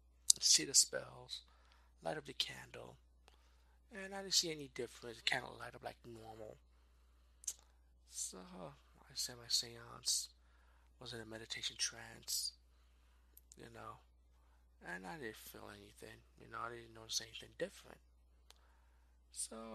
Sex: male